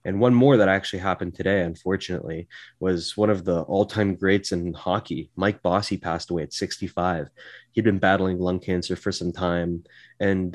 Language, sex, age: English, male, 20-39